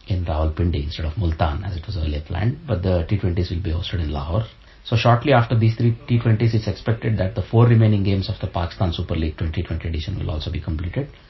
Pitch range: 85-105 Hz